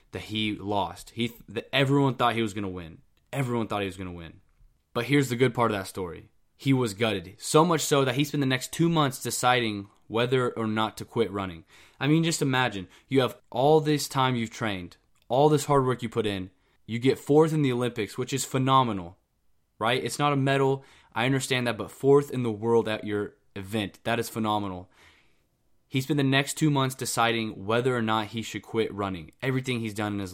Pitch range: 100-130 Hz